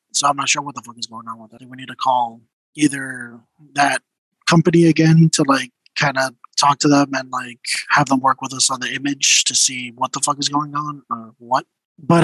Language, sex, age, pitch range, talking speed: English, male, 20-39, 140-180 Hz, 235 wpm